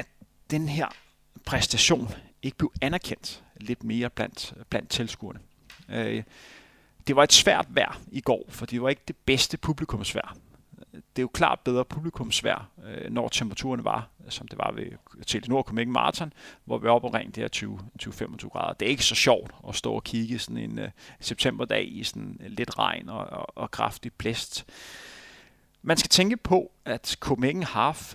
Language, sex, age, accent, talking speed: Danish, male, 30-49, native, 170 wpm